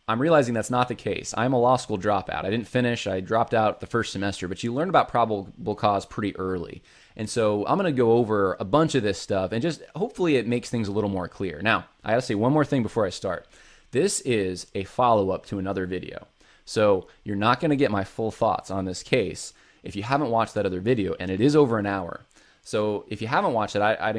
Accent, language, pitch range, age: American, English, 100-120 Hz, 20-39